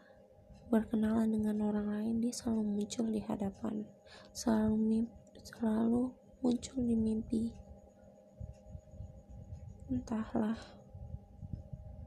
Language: Indonesian